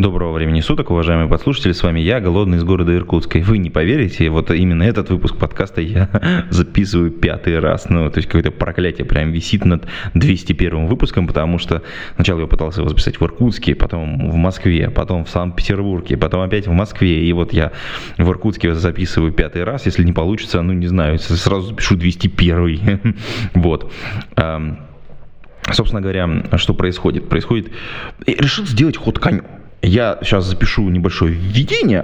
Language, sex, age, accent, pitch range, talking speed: Russian, male, 20-39, native, 85-105 Hz, 160 wpm